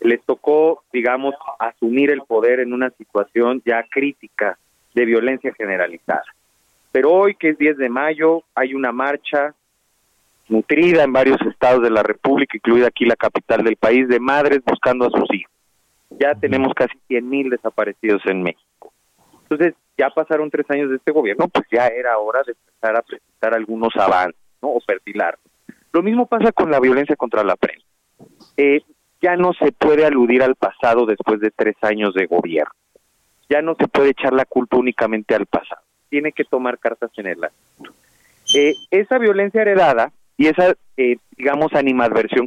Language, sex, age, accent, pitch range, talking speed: Spanish, male, 40-59, Mexican, 115-155 Hz, 170 wpm